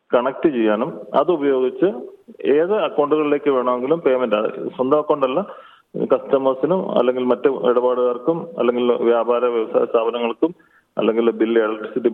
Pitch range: 125-165 Hz